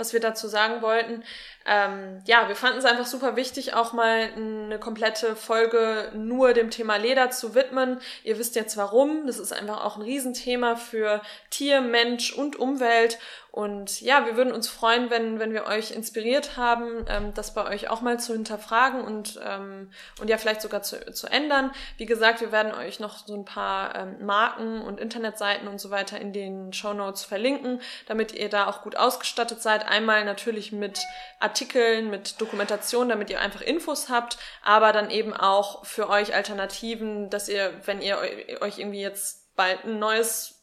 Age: 20-39